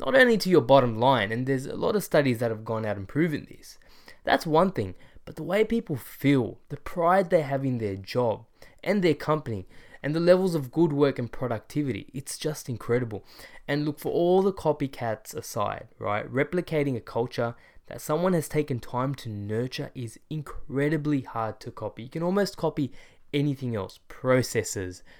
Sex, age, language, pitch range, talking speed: male, 20-39, English, 115-150 Hz, 185 wpm